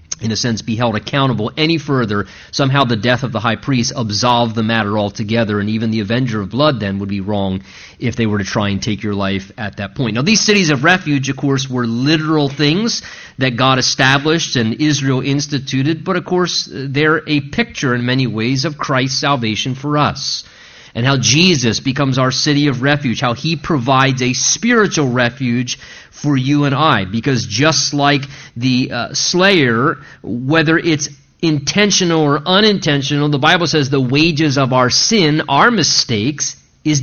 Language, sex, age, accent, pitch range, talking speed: English, male, 30-49, American, 120-155 Hz, 180 wpm